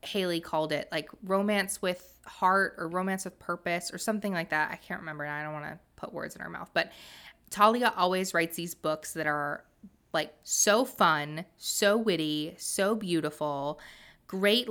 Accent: American